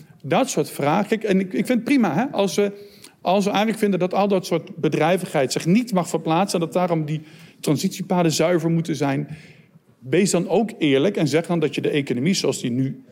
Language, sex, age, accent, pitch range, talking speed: Dutch, male, 50-69, Dutch, 135-175 Hz, 210 wpm